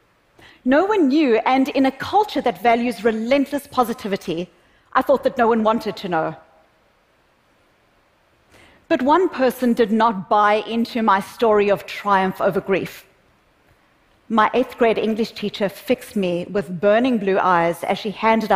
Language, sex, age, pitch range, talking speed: English, female, 40-59, 205-255 Hz, 145 wpm